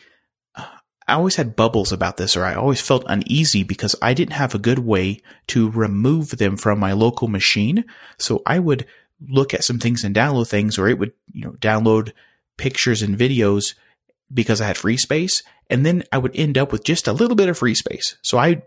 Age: 30-49